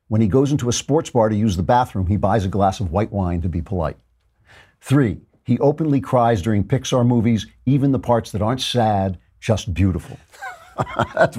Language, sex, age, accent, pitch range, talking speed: English, male, 50-69, American, 95-130 Hz, 195 wpm